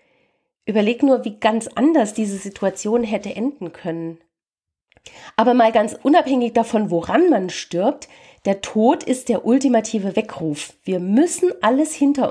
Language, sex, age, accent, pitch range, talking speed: German, female, 40-59, German, 185-255 Hz, 135 wpm